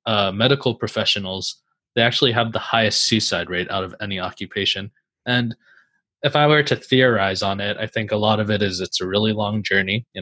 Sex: male